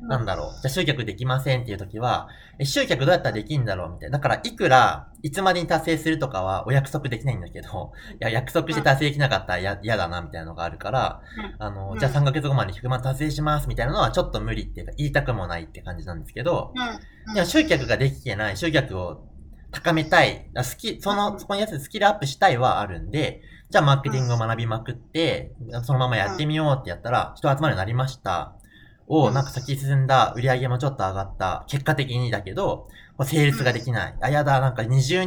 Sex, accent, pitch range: male, native, 105-150 Hz